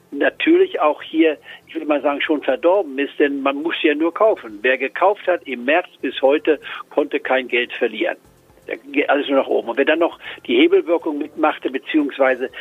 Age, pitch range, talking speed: 60-79, 130-210 Hz, 195 wpm